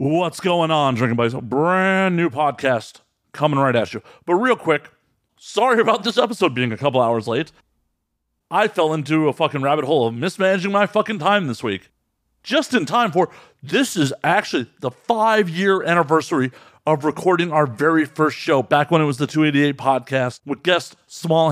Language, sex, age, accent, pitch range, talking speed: English, male, 40-59, American, 125-170 Hz, 180 wpm